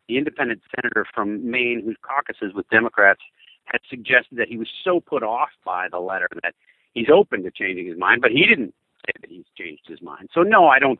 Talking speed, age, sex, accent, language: 220 wpm, 50-69, male, American, English